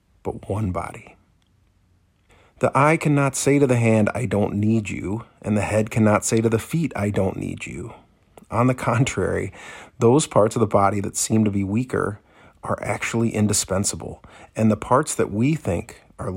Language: English